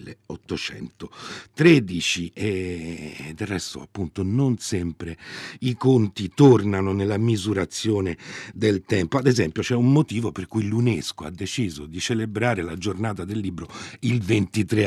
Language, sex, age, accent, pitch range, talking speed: Italian, male, 50-69, native, 85-120 Hz, 130 wpm